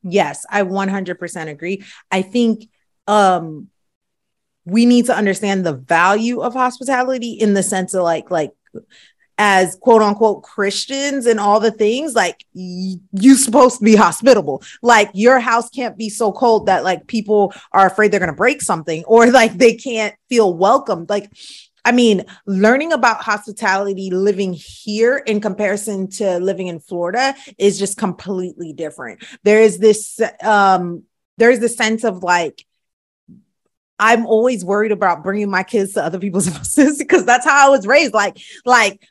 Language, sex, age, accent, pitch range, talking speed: English, female, 30-49, American, 195-245 Hz, 165 wpm